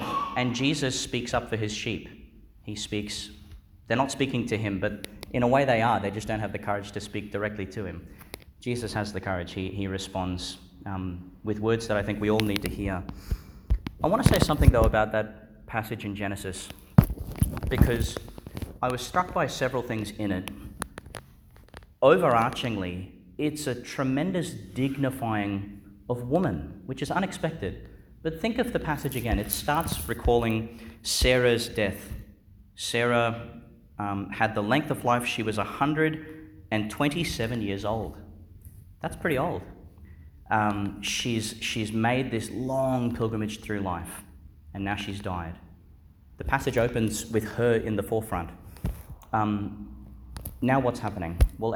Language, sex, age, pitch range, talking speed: English, male, 30-49, 95-120 Hz, 150 wpm